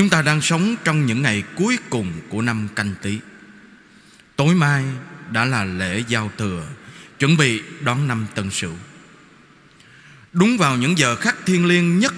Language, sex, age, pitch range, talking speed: Vietnamese, male, 20-39, 125-185 Hz, 170 wpm